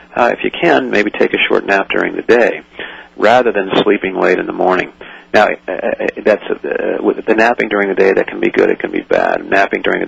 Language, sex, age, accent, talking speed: English, male, 40-59, American, 250 wpm